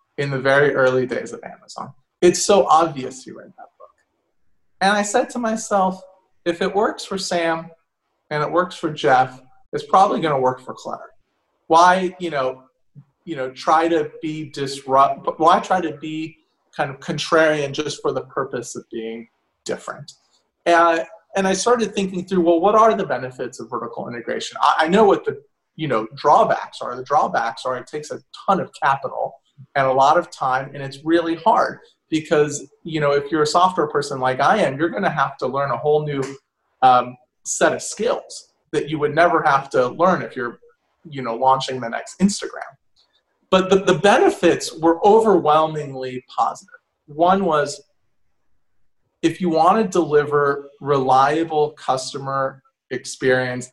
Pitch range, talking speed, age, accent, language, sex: 135-185 Hz, 175 wpm, 30-49, American, English, male